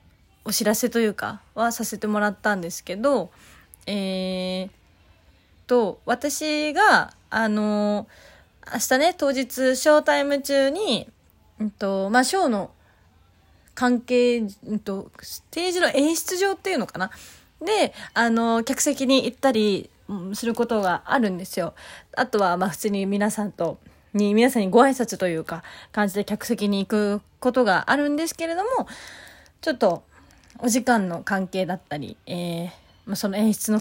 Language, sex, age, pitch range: Japanese, female, 20-39, 200-260 Hz